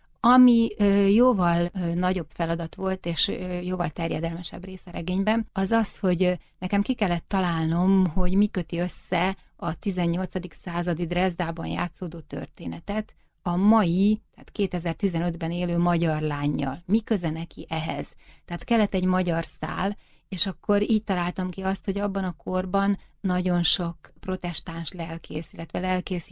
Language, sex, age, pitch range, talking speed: Hungarian, female, 30-49, 170-200 Hz, 135 wpm